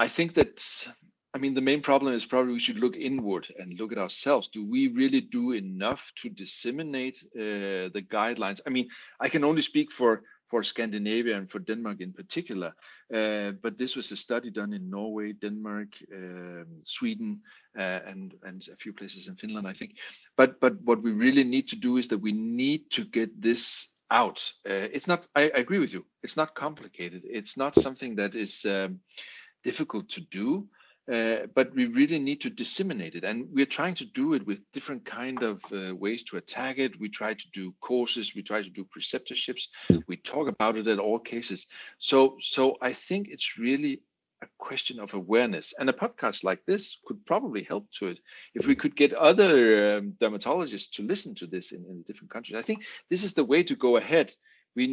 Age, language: 40-59, English